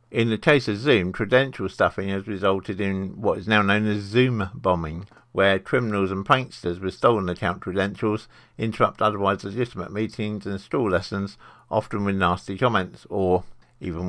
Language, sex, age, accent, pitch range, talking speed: English, male, 50-69, British, 95-125 Hz, 160 wpm